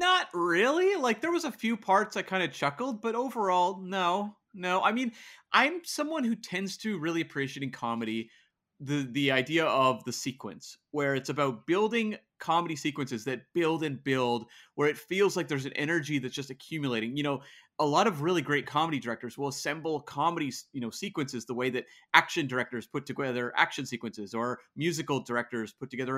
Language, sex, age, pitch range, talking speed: English, male, 30-49, 130-175 Hz, 190 wpm